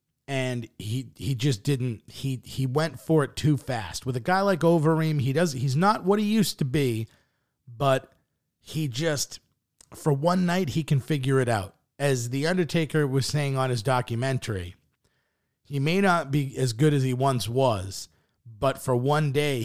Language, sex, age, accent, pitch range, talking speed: English, male, 30-49, American, 125-155 Hz, 180 wpm